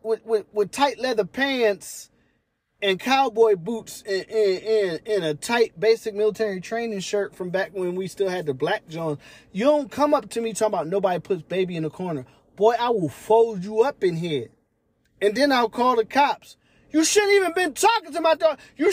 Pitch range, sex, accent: 155-245 Hz, male, American